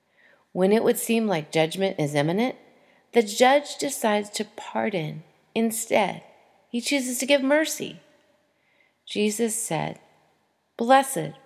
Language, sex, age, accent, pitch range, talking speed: English, female, 40-59, American, 170-240 Hz, 115 wpm